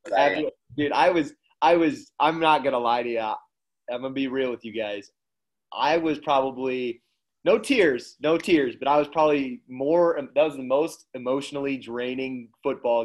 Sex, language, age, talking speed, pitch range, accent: male, English, 20-39, 170 wpm, 115-155 Hz, American